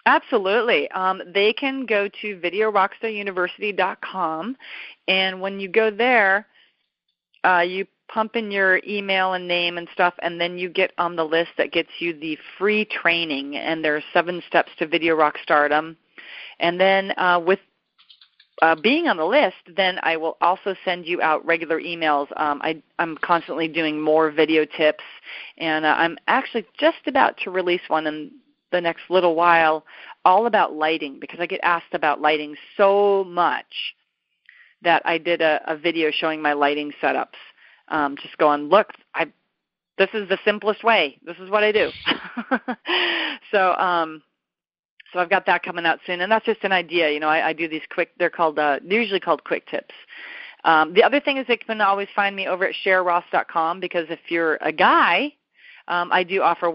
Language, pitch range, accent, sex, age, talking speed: English, 160-200 Hz, American, female, 30-49, 180 wpm